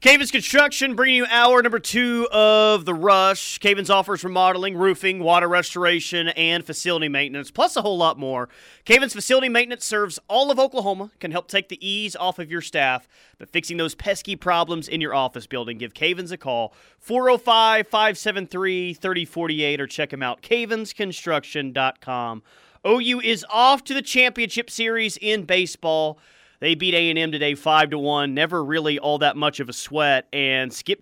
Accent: American